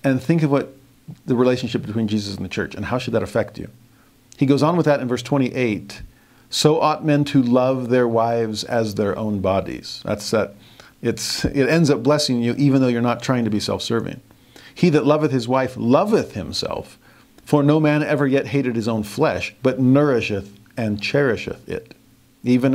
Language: English